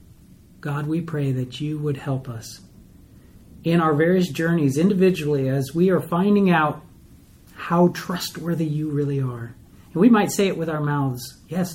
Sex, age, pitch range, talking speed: male, 40-59, 130-165 Hz, 165 wpm